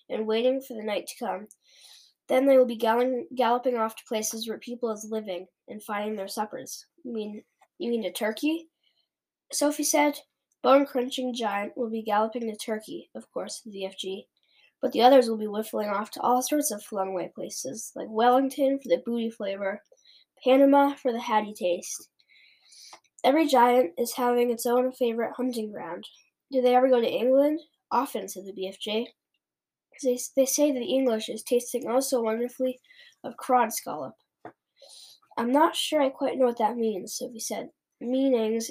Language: English